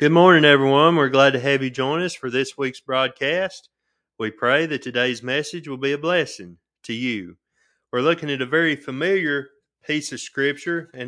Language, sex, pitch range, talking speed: English, male, 130-155 Hz, 190 wpm